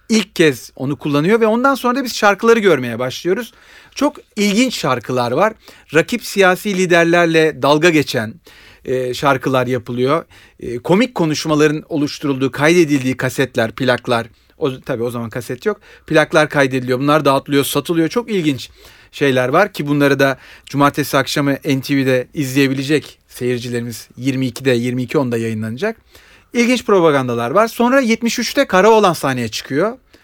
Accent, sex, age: native, male, 40-59